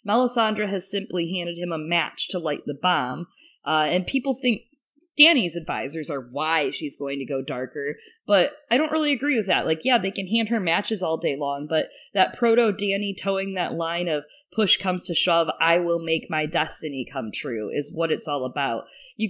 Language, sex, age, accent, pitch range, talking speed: English, female, 30-49, American, 155-215 Hz, 205 wpm